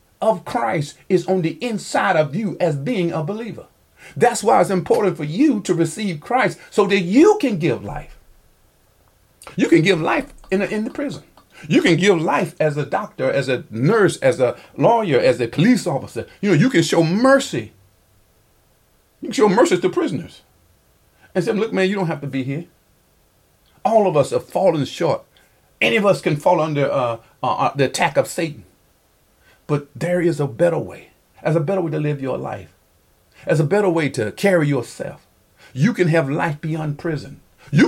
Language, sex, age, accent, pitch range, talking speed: English, male, 50-69, American, 145-210 Hz, 190 wpm